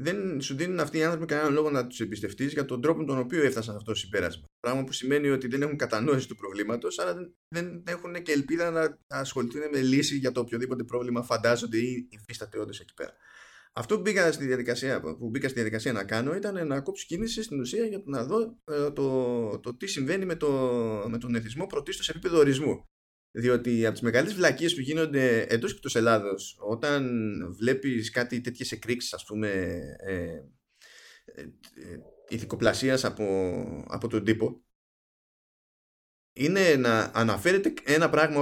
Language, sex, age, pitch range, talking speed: Greek, male, 20-39, 110-150 Hz, 180 wpm